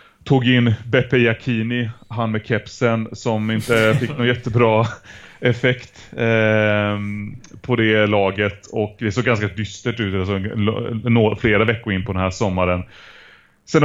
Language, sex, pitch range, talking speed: Swedish, male, 100-115 Hz, 140 wpm